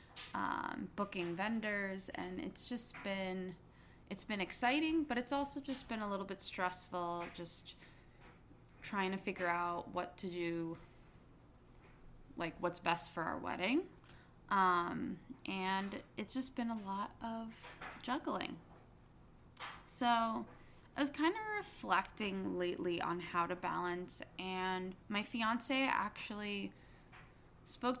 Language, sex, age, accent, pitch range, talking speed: English, female, 20-39, American, 180-225 Hz, 125 wpm